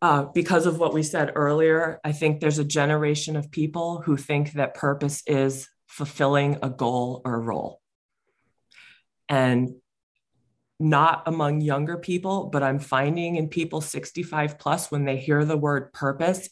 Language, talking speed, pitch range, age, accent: English, 155 wpm, 130-155 Hz, 20-39, American